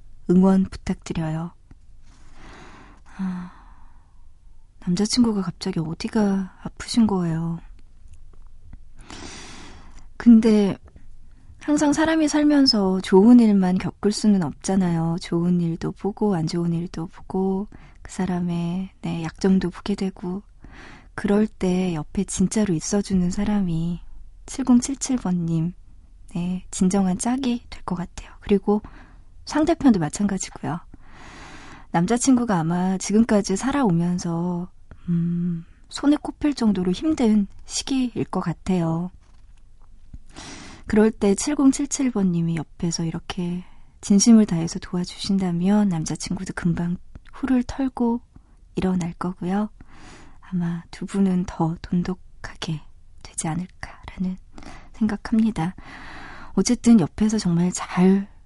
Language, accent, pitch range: Korean, native, 170-210 Hz